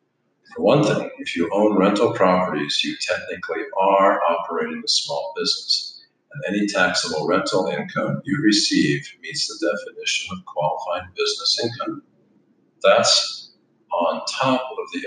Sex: male